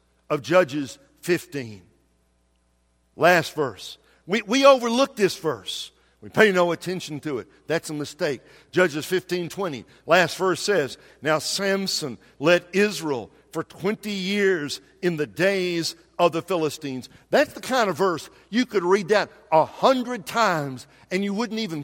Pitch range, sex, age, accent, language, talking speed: 155-220 Hz, male, 60-79, American, English, 150 wpm